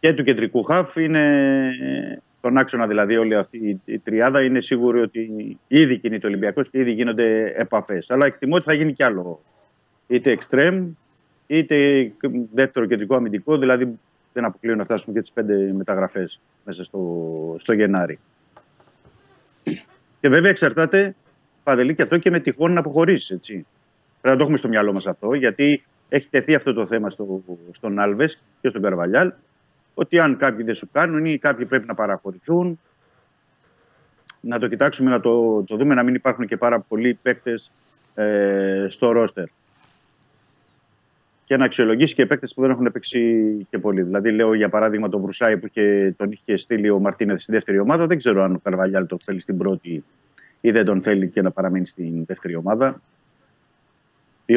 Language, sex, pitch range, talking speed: Greek, male, 100-135 Hz, 170 wpm